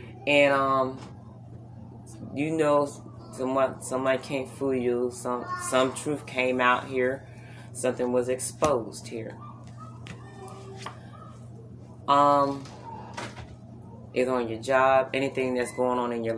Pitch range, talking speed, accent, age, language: 120-135 Hz, 110 wpm, American, 20-39, English